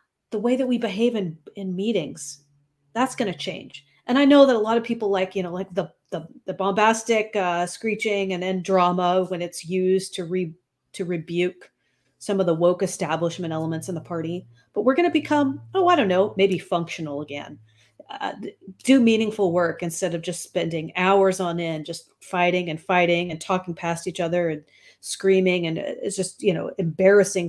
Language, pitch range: English, 175-225 Hz